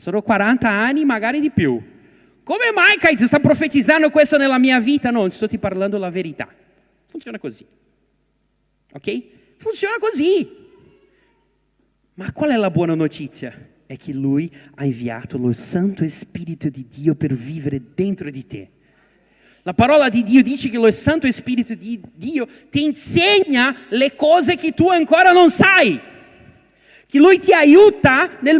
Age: 40-59